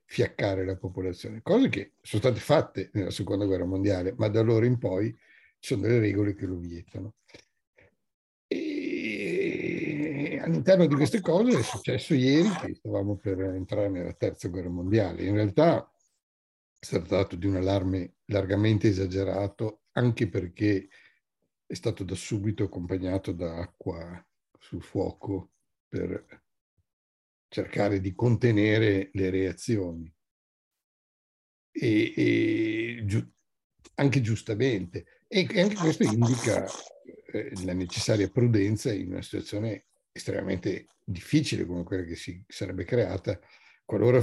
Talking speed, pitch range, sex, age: 125 wpm, 95-120 Hz, male, 60-79